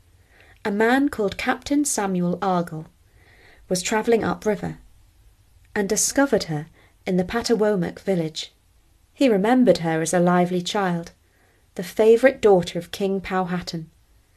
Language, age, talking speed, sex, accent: English, 30-49, 120 wpm, female, British